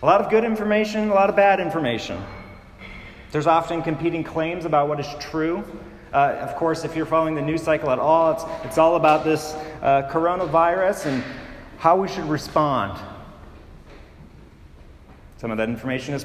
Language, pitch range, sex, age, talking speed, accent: English, 135-185 Hz, male, 30-49, 170 wpm, American